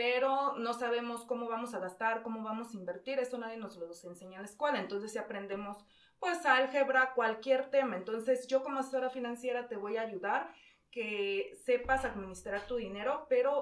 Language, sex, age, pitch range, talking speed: Spanish, female, 30-49, 205-260 Hz, 180 wpm